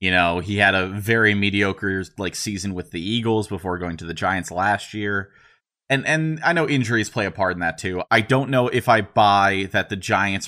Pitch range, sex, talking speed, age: 95-135 Hz, male, 225 wpm, 30-49